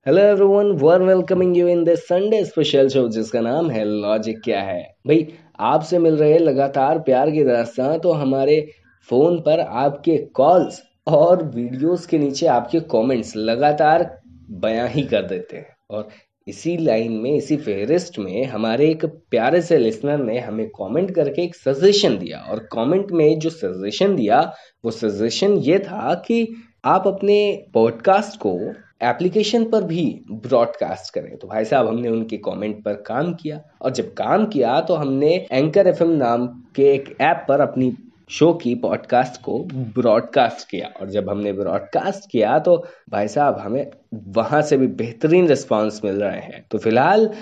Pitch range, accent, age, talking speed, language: 125-170 Hz, native, 20-39, 165 wpm, Hindi